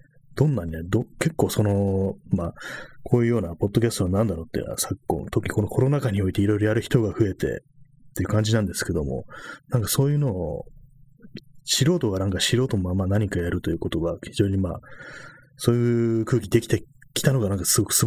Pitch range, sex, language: 95-130 Hz, male, Japanese